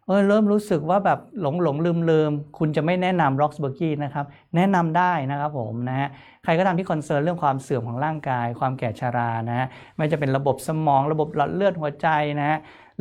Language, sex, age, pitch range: Thai, male, 60-79, 130-175 Hz